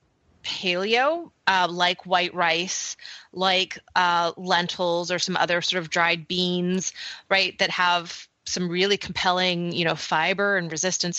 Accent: American